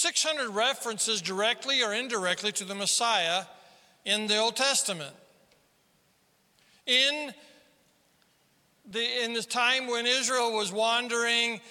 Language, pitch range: English, 200-245 Hz